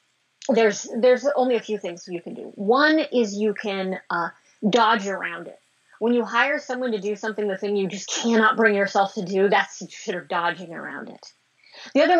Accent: American